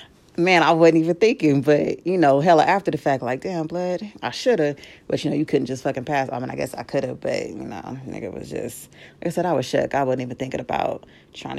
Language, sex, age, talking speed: Arabic, female, 30-49, 260 wpm